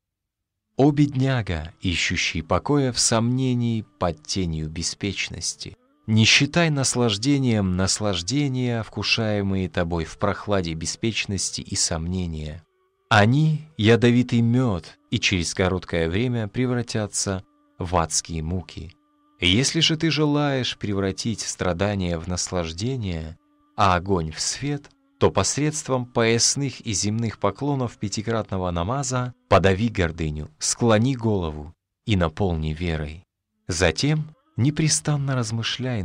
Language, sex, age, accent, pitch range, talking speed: Russian, male, 30-49, native, 85-125 Hz, 105 wpm